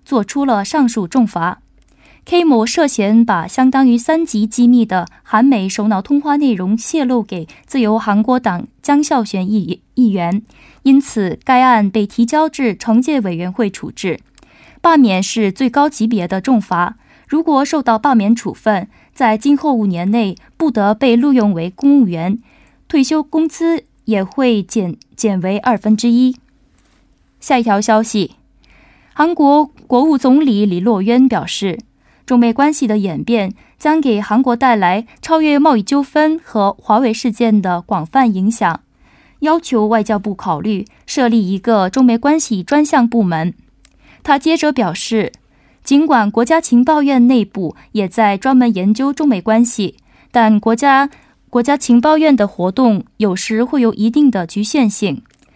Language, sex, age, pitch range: Korean, female, 20-39, 210-275 Hz